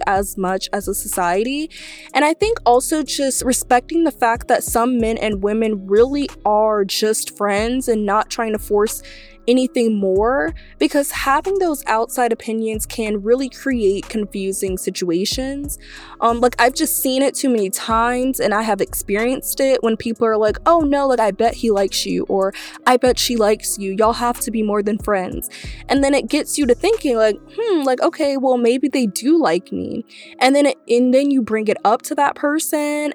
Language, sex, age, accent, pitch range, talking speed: English, female, 20-39, American, 210-265 Hz, 195 wpm